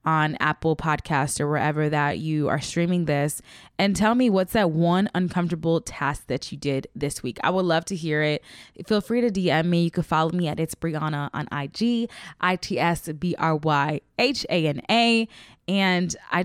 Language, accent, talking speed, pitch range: English, American, 170 wpm, 155-220 Hz